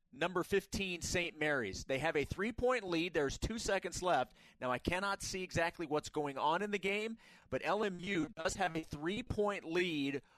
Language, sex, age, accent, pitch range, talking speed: English, male, 30-49, American, 135-175 Hz, 180 wpm